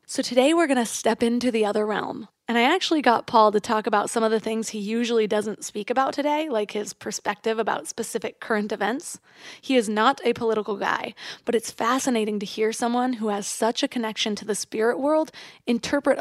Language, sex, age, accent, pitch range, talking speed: English, female, 20-39, American, 210-245 Hz, 210 wpm